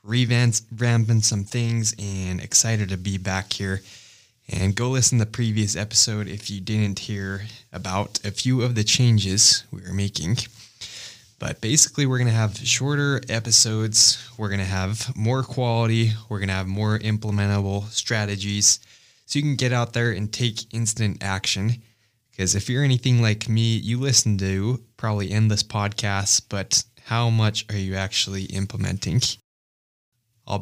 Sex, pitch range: male, 105-120 Hz